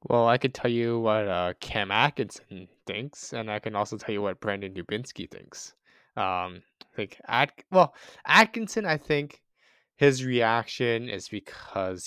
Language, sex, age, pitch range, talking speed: English, male, 20-39, 100-135 Hz, 160 wpm